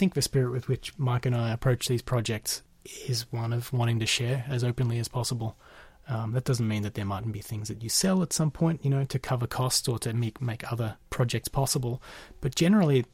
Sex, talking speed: male, 235 wpm